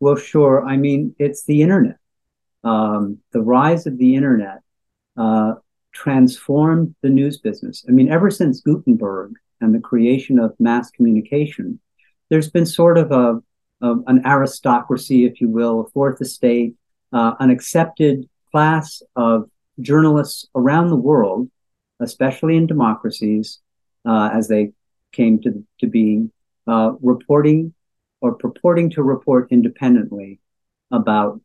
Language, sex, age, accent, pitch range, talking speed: English, male, 50-69, American, 110-145 Hz, 135 wpm